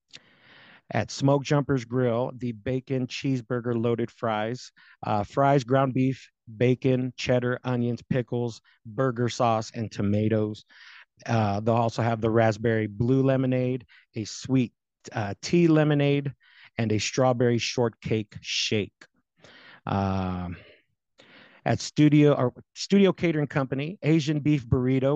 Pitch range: 115-140 Hz